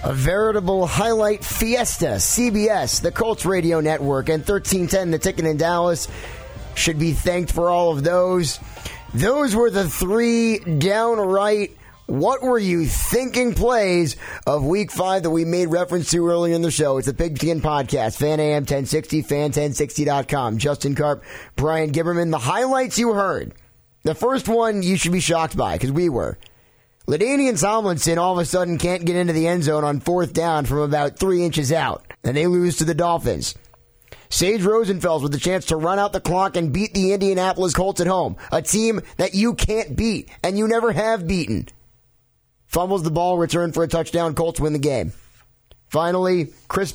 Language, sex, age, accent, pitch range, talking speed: English, male, 30-49, American, 150-190 Hz, 170 wpm